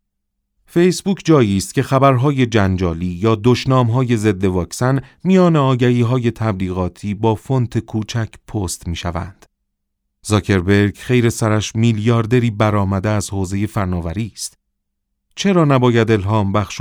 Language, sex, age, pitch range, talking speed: Persian, male, 40-59, 95-120 Hz, 110 wpm